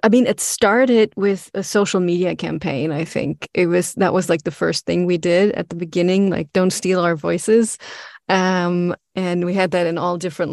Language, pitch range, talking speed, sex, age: English, 175-200 Hz, 210 wpm, female, 30-49